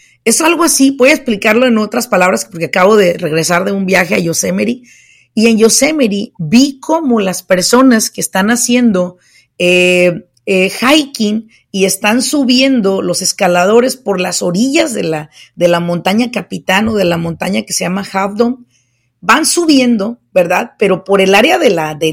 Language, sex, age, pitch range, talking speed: Spanish, female, 40-59, 185-270 Hz, 175 wpm